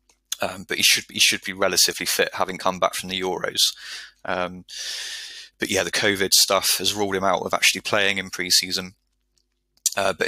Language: English